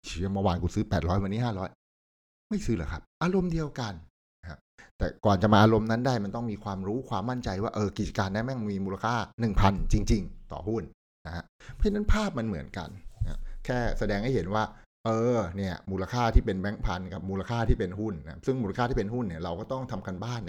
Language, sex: Thai, male